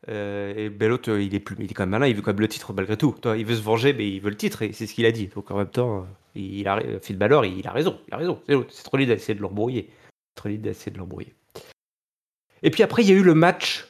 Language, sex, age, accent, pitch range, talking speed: French, male, 30-49, French, 105-160 Hz, 305 wpm